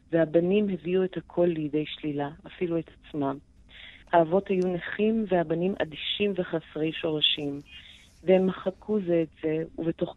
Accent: native